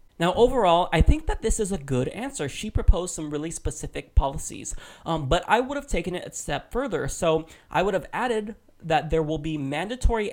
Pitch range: 150-185 Hz